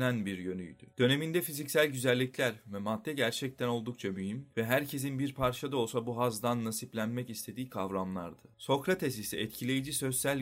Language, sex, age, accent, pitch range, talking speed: Turkish, male, 30-49, native, 110-130 Hz, 130 wpm